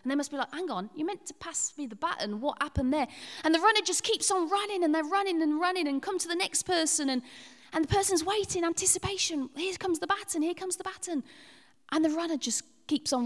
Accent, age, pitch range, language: British, 40-59, 210-305 Hz, English